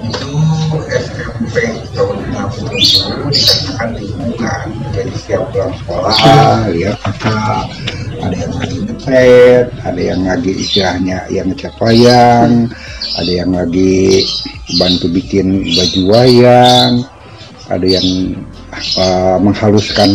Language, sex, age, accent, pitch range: Indonesian, male, 60-79, native, 95-125 Hz